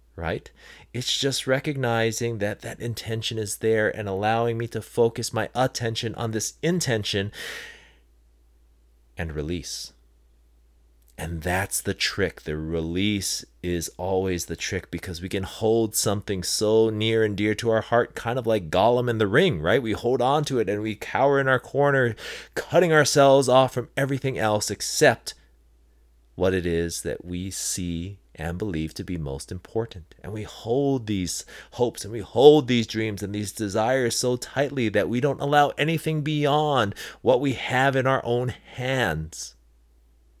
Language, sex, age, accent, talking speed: English, male, 30-49, American, 160 wpm